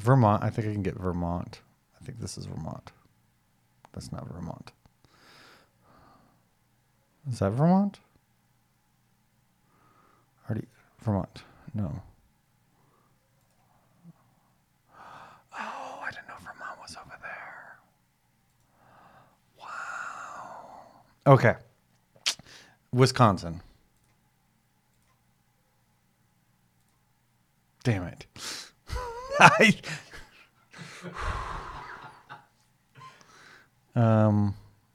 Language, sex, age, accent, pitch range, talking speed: English, male, 40-59, American, 100-130 Hz, 60 wpm